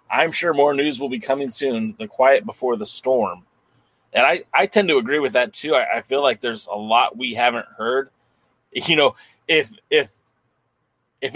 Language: English